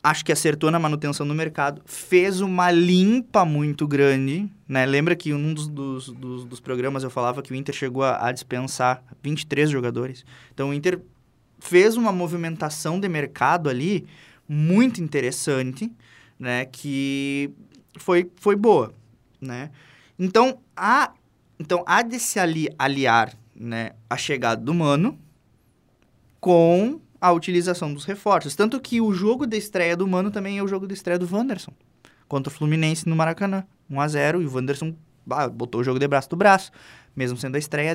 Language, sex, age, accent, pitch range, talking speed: Portuguese, male, 20-39, Brazilian, 135-175 Hz, 160 wpm